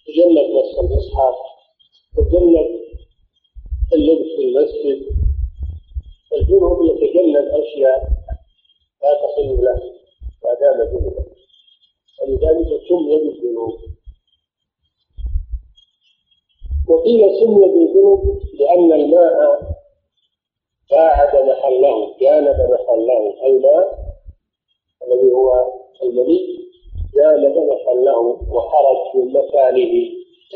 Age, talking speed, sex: 50-69, 65 wpm, male